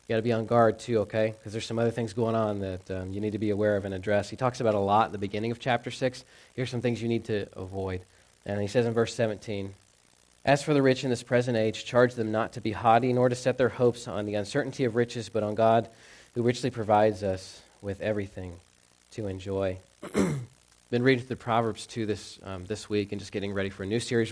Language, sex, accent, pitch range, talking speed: English, male, American, 95-115 Hz, 250 wpm